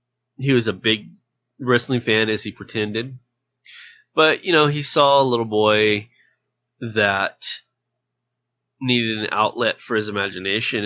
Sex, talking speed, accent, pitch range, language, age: male, 135 wpm, American, 110-130 Hz, English, 30-49